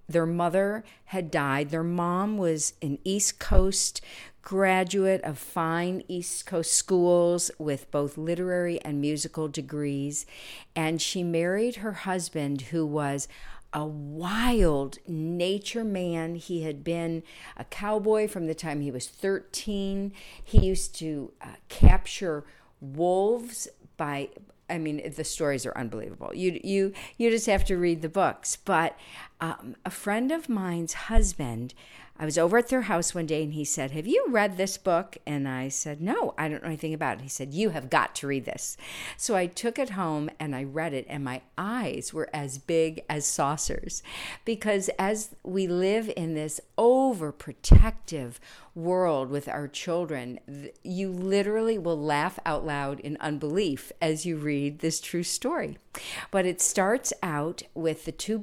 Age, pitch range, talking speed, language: 50-69, 150-190 Hz, 160 wpm, English